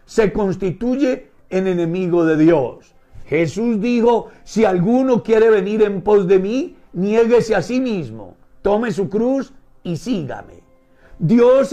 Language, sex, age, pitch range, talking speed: Spanish, male, 60-79, 180-230 Hz, 135 wpm